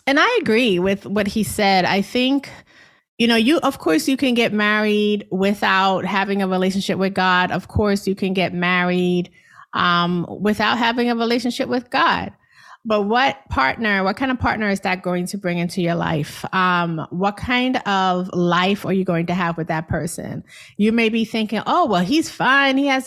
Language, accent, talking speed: English, American, 195 wpm